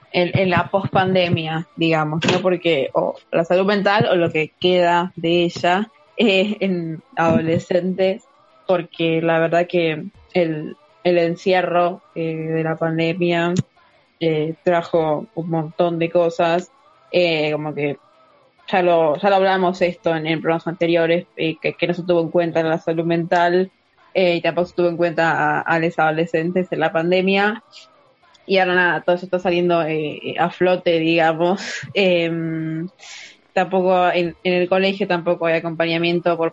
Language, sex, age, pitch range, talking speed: Spanish, female, 20-39, 165-180 Hz, 160 wpm